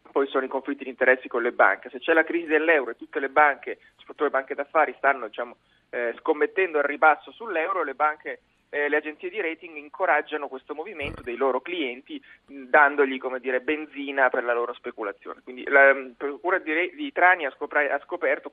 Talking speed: 205 wpm